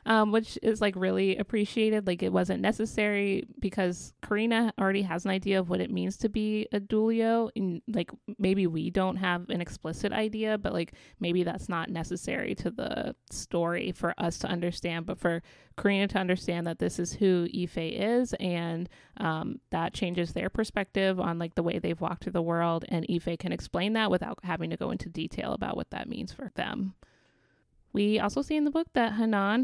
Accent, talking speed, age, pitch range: American, 195 wpm, 30-49, 175-215 Hz